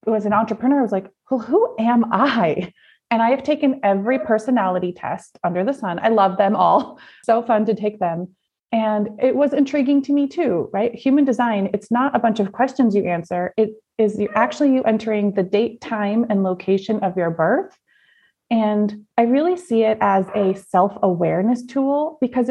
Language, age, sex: English, 30-49, female